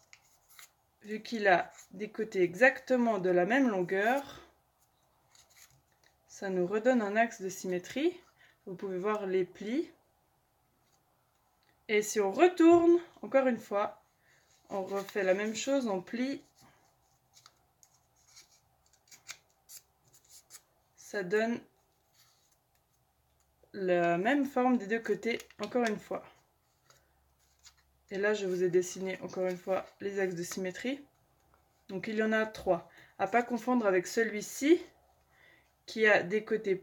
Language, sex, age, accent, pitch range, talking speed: French, female, 20-39, French, 190-245 Hz, 125 wpm